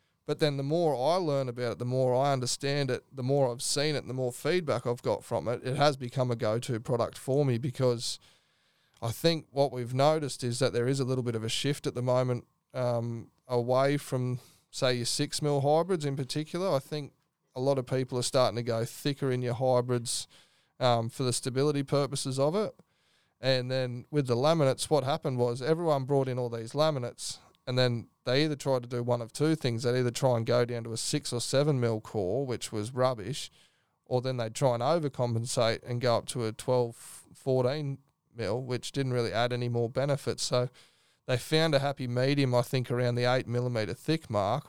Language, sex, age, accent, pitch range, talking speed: English, male, 20-39, Australian, 120-140 Hz, 215 wpm